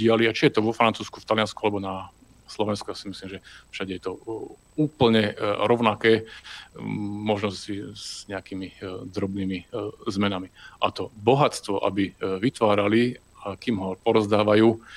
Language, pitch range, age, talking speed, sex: Slovak, 100-115 Hz, 40-59, 135 wpm, male